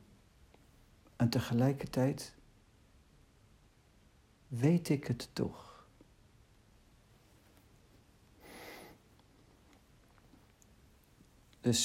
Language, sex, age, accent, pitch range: Dutch, male, 60-79, Dutch, 105-125 Hz